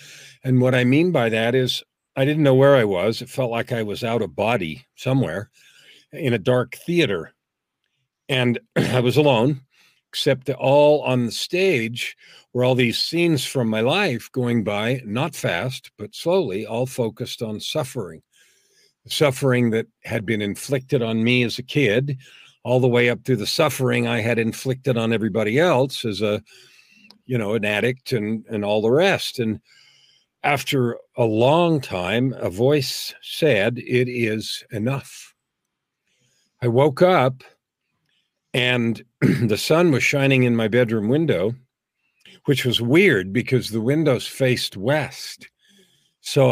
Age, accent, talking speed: 50-69, American, 155 wpm